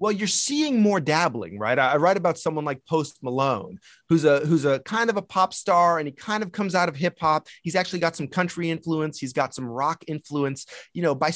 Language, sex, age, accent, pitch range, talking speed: English, male, 30-49, American, 145-185 Hz, 240 wpm